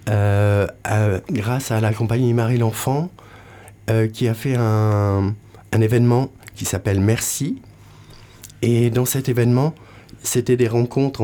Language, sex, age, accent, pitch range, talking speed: French, male, 50-69, French, 100-120 Hz, 135 wpm